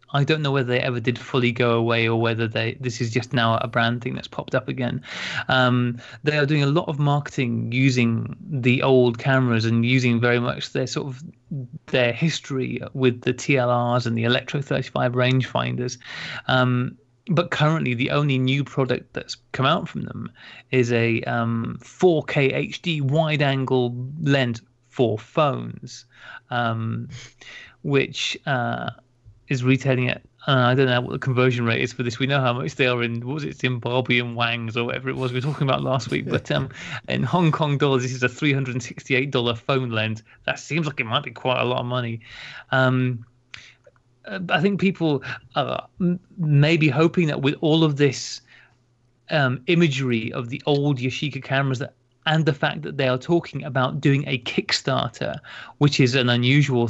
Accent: British